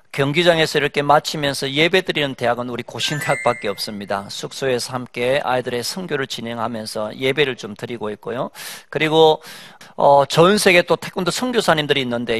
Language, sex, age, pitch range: Korean, male, 40-59, 125-165 Hz